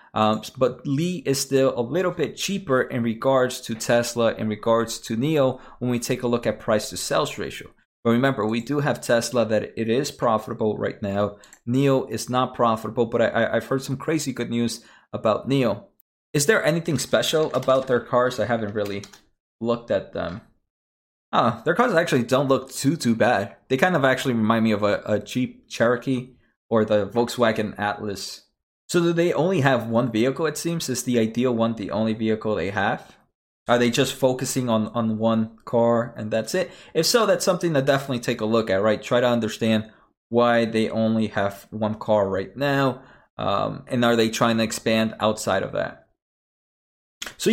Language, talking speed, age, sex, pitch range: English, 195 wpm, 20-39, male, 110-135 Hz